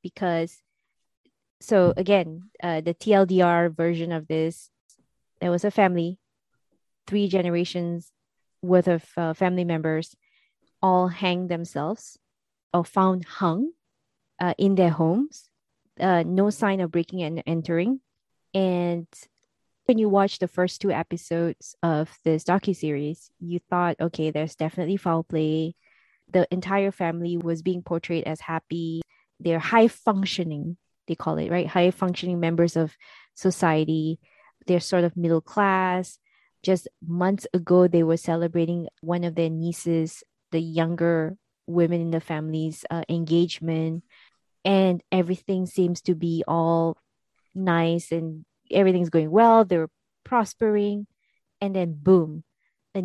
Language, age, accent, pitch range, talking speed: English, 20-39, Malaysian, 165-185 Hz, 130 wpm